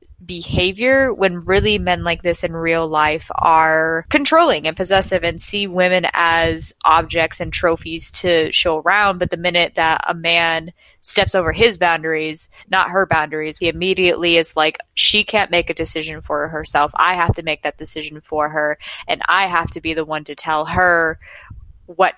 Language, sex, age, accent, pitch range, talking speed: English, female, 20-39, American, 160-190 Hz, 180 wpm